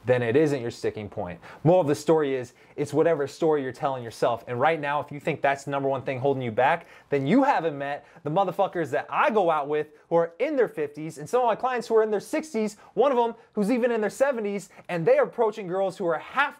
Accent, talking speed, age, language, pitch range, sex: American, 265 wpm, 20-39, English, 155-220 Hz, male